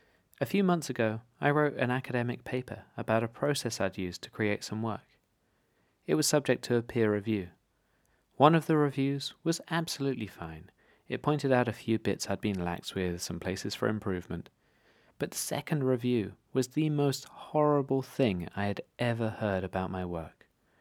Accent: British